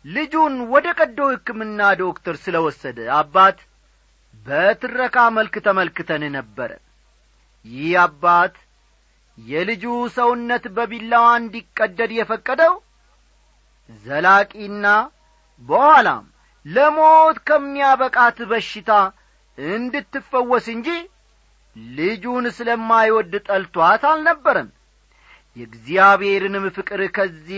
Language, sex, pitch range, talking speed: Amharic, male, 160-235 Hz, 70 wpm